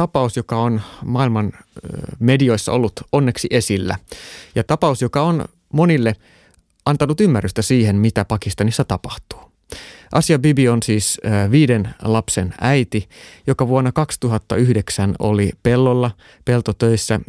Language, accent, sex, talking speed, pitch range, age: Finnish, native, male, 110 wpm, 105-135 Hz, 30-49